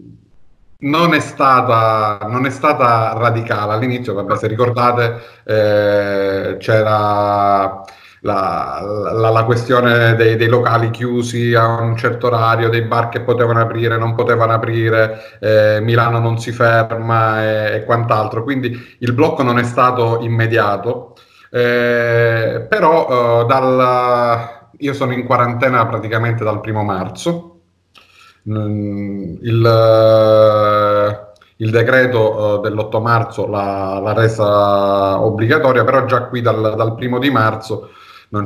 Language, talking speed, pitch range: Italian, 120 wpm, 105-120 Hz